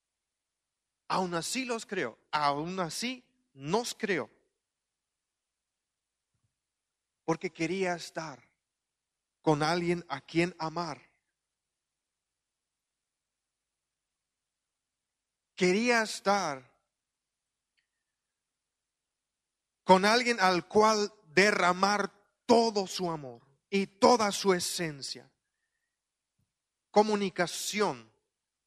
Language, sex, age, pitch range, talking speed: Spanish, male, 40-59, 160-225 Hz, 65 wpm